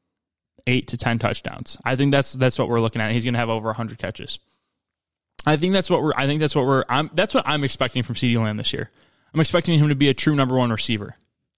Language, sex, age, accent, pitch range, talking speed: English, male, 20-39, American, 120-145 Hz, 255 wpm